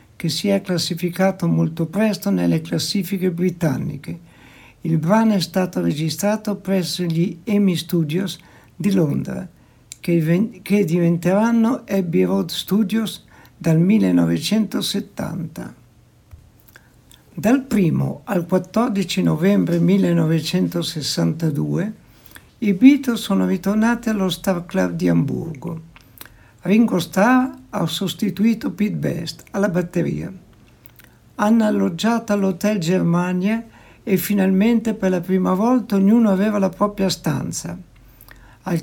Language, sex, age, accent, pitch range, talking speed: Italian, male, 60-79, native, 160-205 Hz, 105 wpm